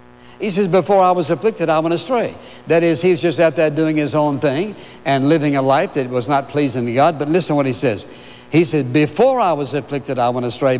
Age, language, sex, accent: 60-79, English, male, American